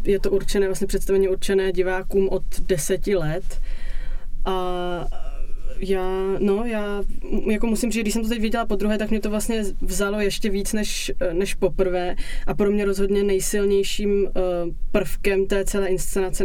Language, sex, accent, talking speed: Czech, female, native, 155 wpm